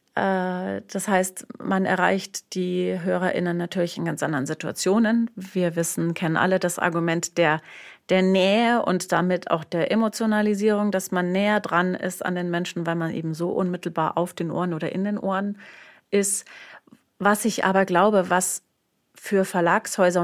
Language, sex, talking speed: German, female, 155 wpm